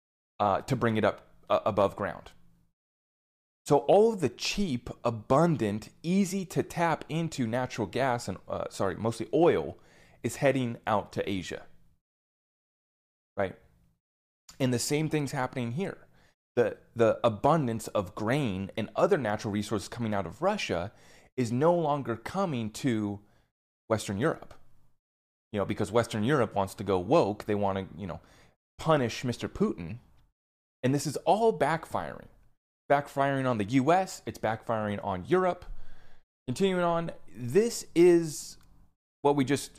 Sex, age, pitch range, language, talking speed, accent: male, 30-49, 100-145 Hz, English, 140 wpm, American